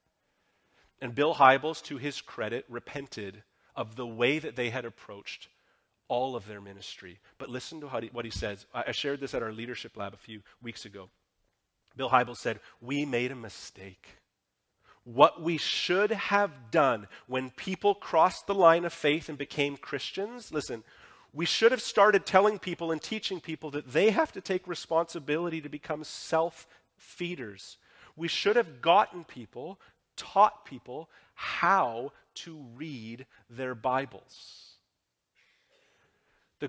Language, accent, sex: English, American, male